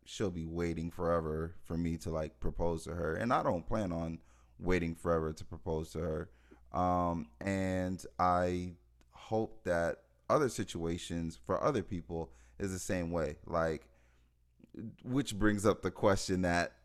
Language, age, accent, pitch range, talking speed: English, 20-39, American, 80-100 Hz, 155 wpm